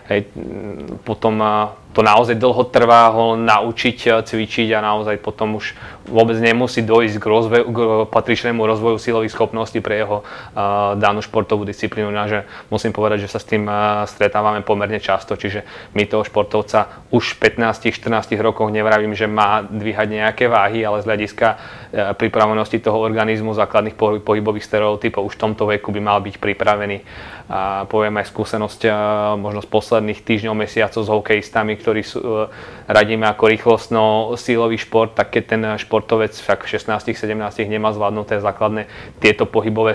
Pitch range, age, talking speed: 105-110 Hz, 20-39, 150 wpm